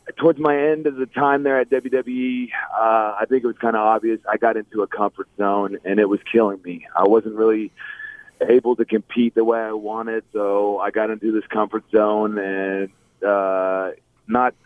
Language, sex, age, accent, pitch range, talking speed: English, male, 30-49, American, 105-140 Hz, 195 wpm